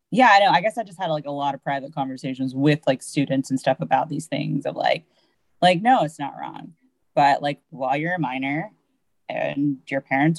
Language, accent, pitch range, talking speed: English, American, 135-160 Hz, 220 wpm